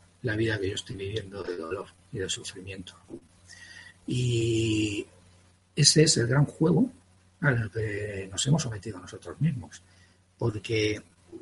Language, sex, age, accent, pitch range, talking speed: Spanish, male, 60-79, Spanish, 95-125 Hz, 130 wpm